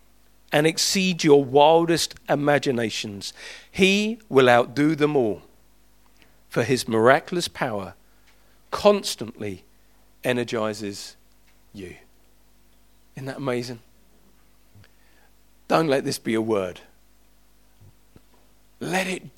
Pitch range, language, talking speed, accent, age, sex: 115-150 Hz, English, 85 wpm, British, 40-59, male